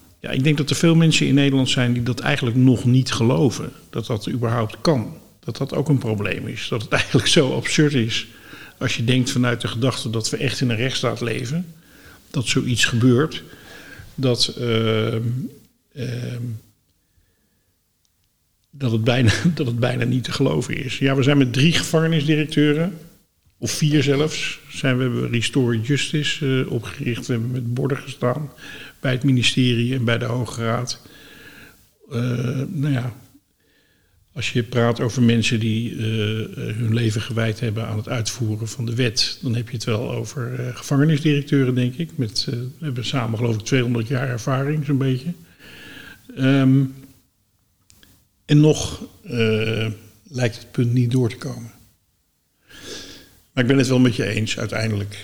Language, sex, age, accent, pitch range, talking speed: Dutch, male, 50-69, Dutch, 115-135 Hz, 150 wpm